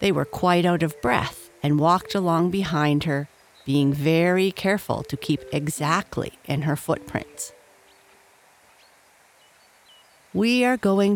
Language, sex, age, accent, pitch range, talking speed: English, female, 50-69, American, 145-205 Hz, 125 wpm